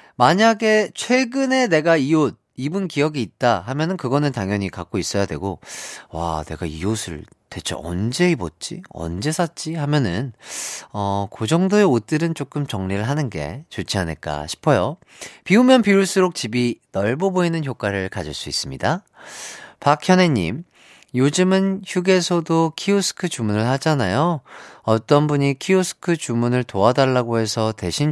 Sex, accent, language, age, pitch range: male, native, Korean, 40-59, 115-170 Hz